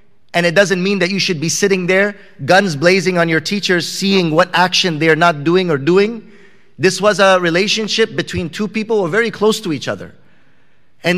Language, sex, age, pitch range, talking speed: English, male, 30-49, 185-235 Hz, 210 wpm